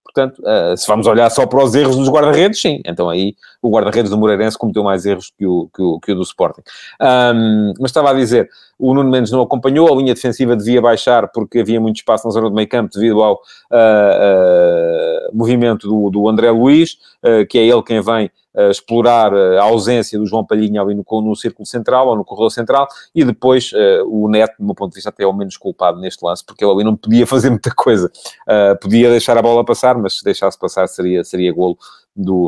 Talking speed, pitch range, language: 220 wpm, 105-135 Hz, Portuguese